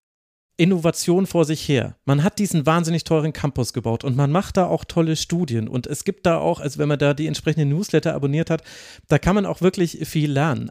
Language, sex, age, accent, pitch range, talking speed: German, male, 40-59, German, 140-170 Hz, 220 wpm